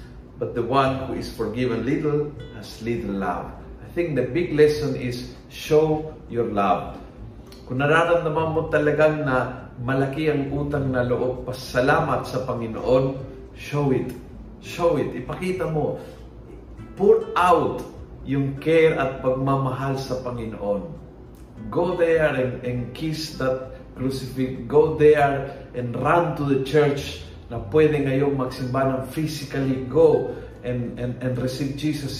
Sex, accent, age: male, native, 50-69